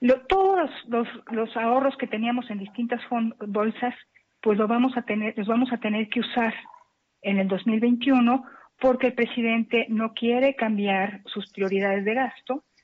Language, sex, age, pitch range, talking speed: Spanish, female, 50-69, 195-240 Hz, 170 wpm